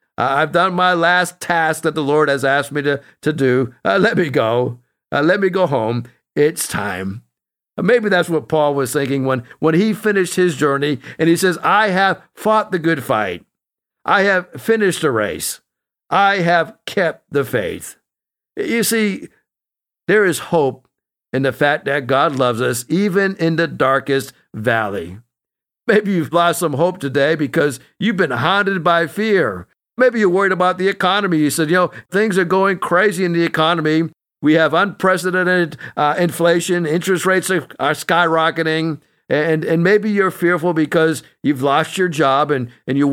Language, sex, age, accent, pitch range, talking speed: English, male, 60-79, American, 140-185 Hz, 175 wpm